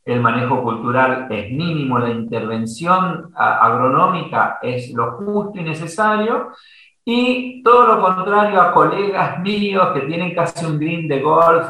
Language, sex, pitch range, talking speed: Spanish, male, 140-190 Hz, 140 wpm